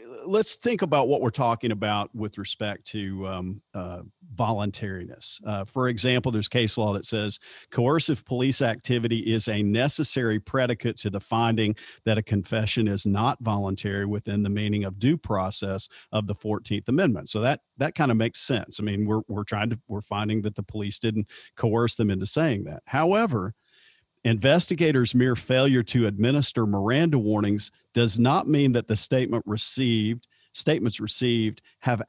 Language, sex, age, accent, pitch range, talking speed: English, male, 50-69, American, 105-130 Hz, 165 wpm